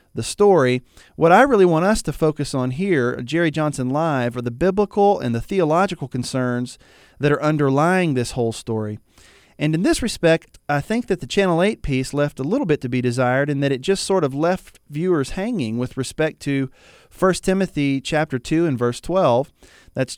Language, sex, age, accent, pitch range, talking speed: English, male, 40-59, American, 125-170 Hz, 195 wpm